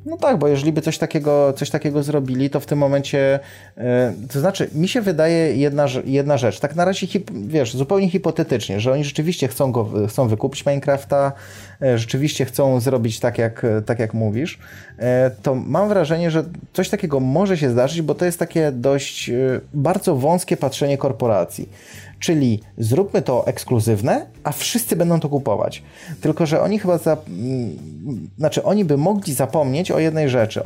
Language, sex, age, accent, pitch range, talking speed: Polish, male, 20-39, native, 125-155 Hz, 165 wpm